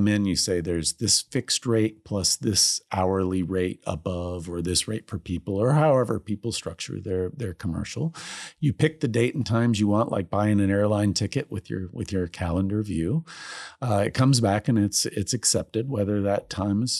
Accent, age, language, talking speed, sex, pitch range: American, 50-69, English, 190 wpm, male, 95-115 Hz